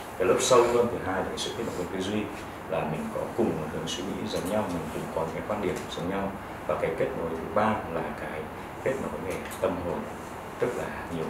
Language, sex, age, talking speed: Vietnamese, male, 30-49, 255 wpm